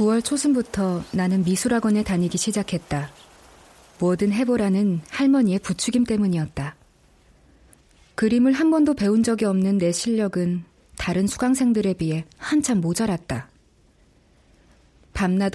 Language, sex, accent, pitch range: Korean, female, native, 140-230 Hz